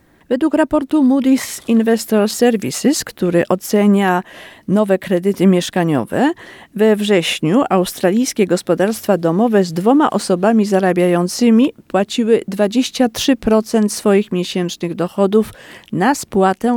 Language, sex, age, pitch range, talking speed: Polish, female, 50-69, 180-230 Hz, 95 wpm